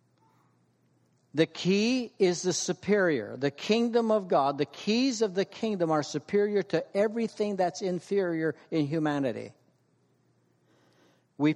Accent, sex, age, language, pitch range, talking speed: American, male, 60-79, English, 140-175 Hz, 120 wpm